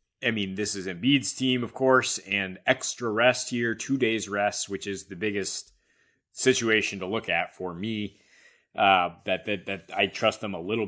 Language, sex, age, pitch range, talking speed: English, male, 20-39, 95-115 Hz, 190 wpm